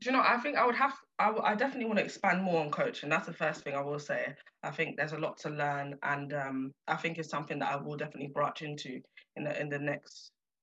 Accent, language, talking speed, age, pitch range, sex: British, English, 260 wpm, 20-39, 145-195 Hz, female